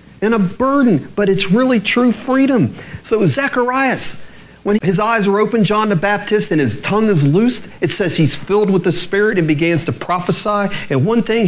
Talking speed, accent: 195 wpm, American